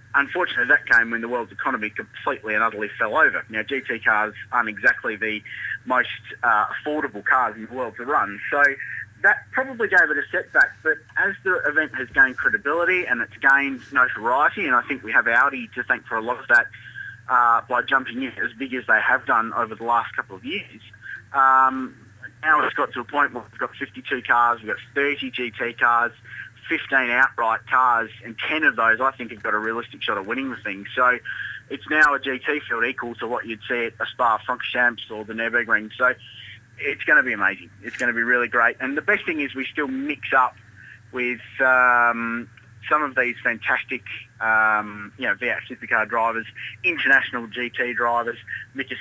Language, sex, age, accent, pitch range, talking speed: English, male, 30-49, Australian, 115-130 Hz, 200 wpm